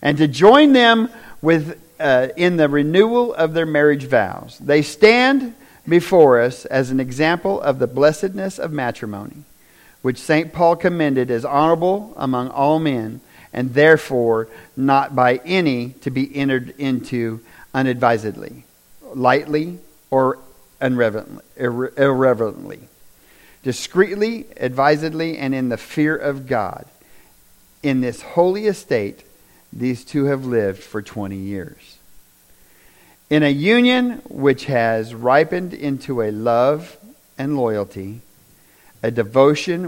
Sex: male